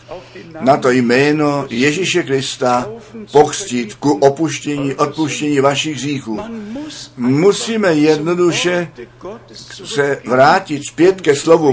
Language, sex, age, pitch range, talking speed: Czech, male, 60-79, 125-160 Hz, 90 wpm